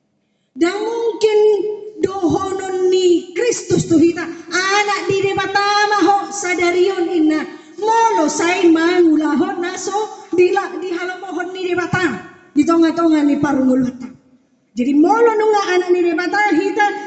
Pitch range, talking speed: 255-355 Hz, 115 wpm